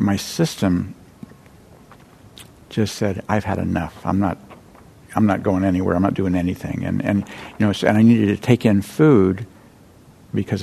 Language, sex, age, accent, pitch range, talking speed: English, male, 60-79, American, 95-110 Hz, 170 wpm